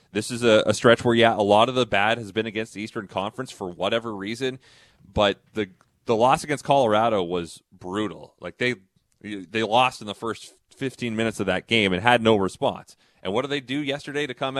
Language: English